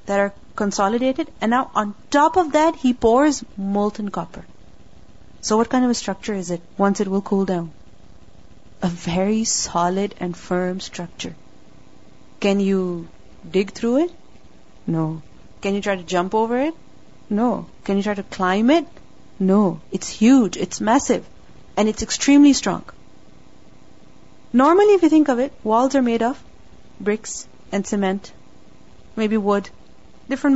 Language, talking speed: English, 150 wpm